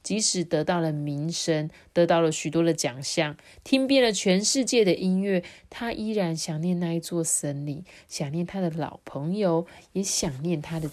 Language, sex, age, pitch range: Chinese, female, 30-49, 165-250 Hz